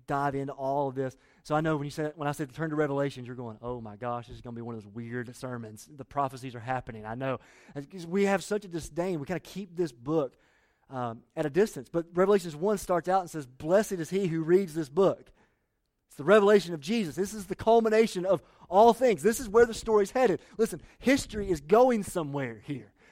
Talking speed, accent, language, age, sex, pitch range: 235 wpm, American, English, 30-49, male, 140-205 Hz